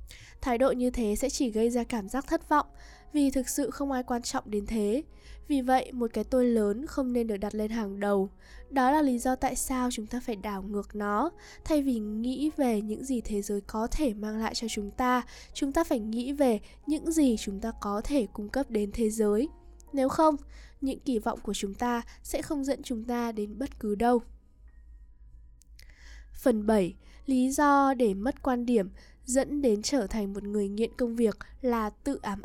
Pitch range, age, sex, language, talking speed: 215-270 Hz, 10-29, female, Vietnamese, 210 wpm